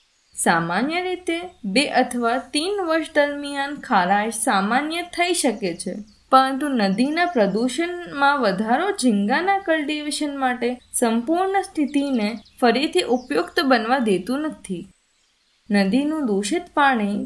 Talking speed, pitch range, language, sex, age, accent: 100 wpm, 220-330 Hz, Gujarati, female, 20-39, native